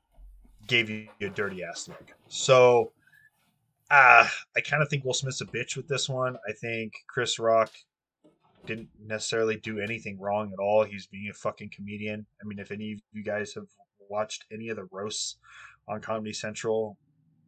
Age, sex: 20-39, male